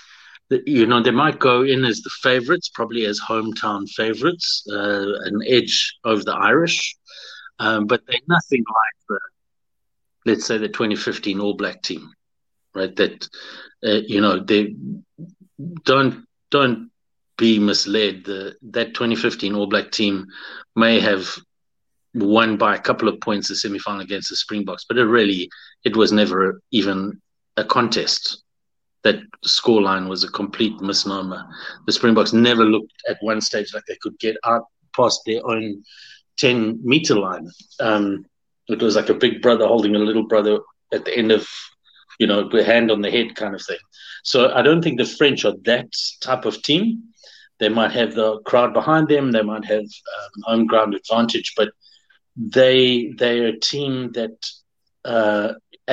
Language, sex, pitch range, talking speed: English, male, 105-130 Hz, 165 wpm